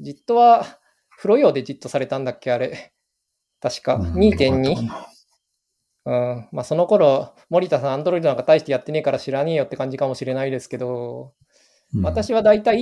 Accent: native